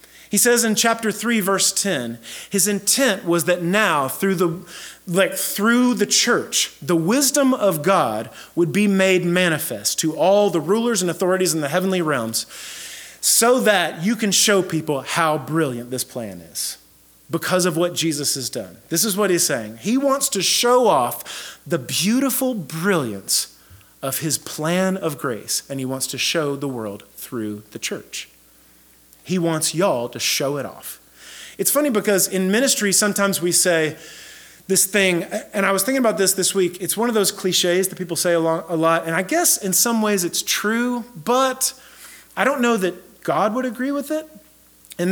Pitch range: 160-205 Hz